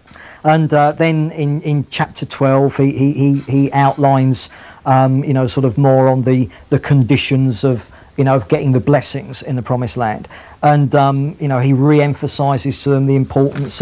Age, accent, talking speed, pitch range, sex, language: 40-59, British, 180 wpm, 135-155 Hz, male, English